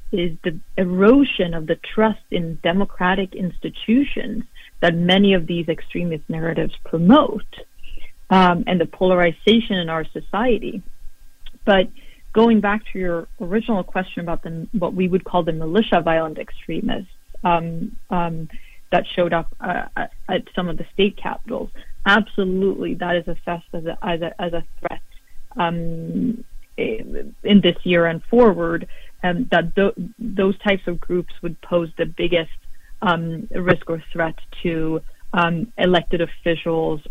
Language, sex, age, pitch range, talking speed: English, female, 40-59, 165-200 Hz, 140 wpm